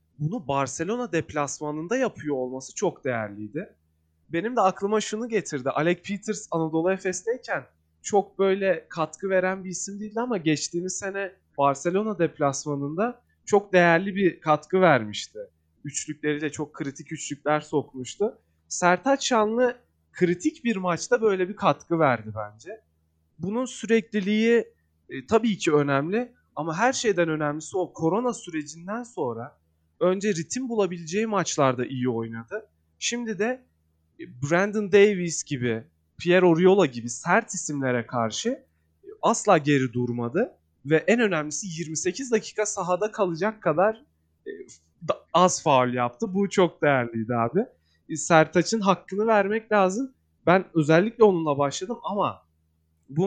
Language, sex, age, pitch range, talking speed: Turkish, male, 30-49, 135-205 Hz, 120 wpm